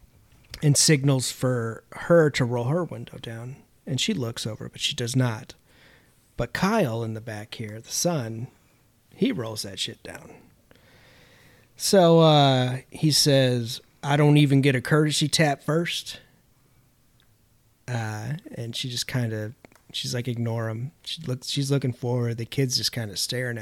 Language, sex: English, male